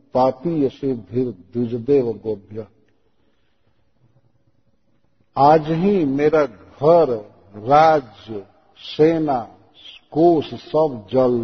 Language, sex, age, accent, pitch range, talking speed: Hindi, male, 50-69, native, 120-150 Hz, 80 wpm